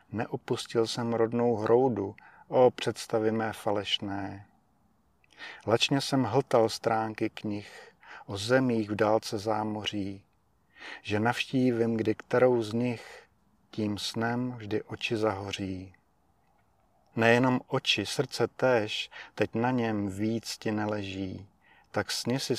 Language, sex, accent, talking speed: Czech, male, native, 110 wpm